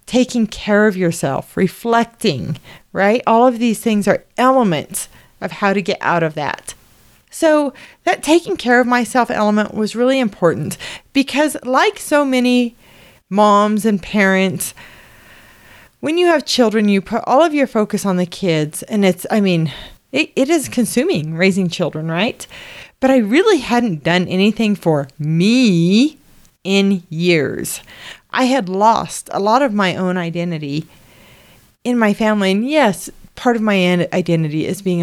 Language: English